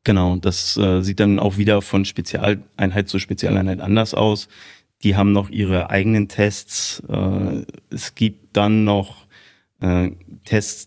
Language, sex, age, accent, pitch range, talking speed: German, male, 30-49, German, 100-115 Hz, 145 wpm